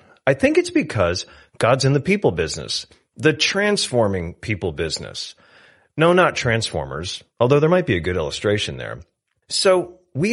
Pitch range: 115-180 Hz